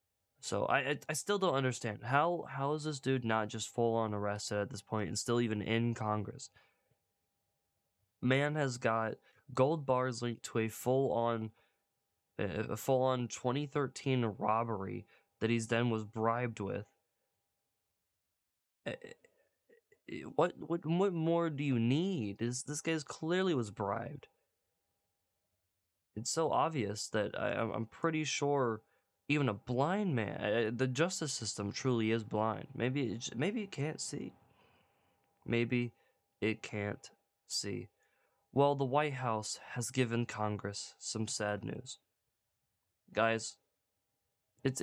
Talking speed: 130 wpm